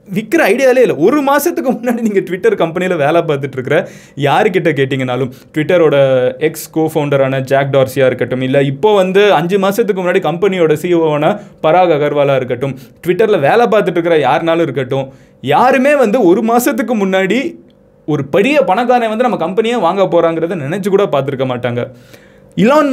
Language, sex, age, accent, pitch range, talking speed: Tamil, male, 20-39, native, 145-215 Hz, 145 wpm